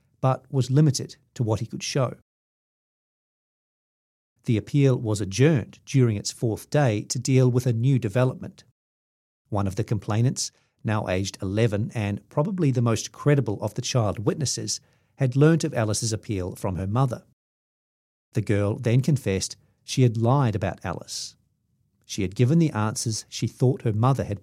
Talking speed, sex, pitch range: 160 wpm, male, 110-135 Hz